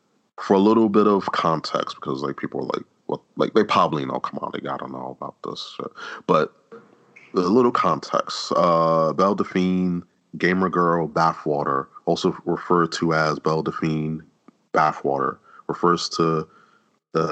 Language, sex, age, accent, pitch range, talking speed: English, male, 30-49, American, 70-85 Hz, 160 wpm